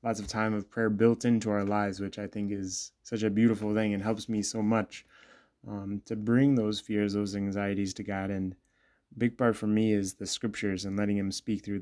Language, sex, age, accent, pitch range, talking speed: English, male, 20-39, American, 100-110 Hz, 225 wpm